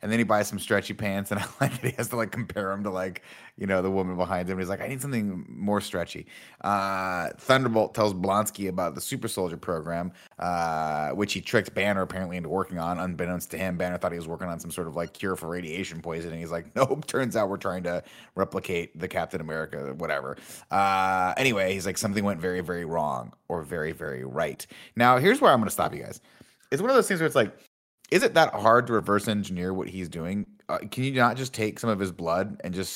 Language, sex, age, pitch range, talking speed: English, male, 30-49, 90-120 Hz, 240 wpm